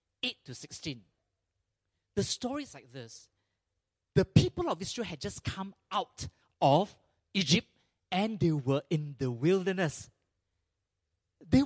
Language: English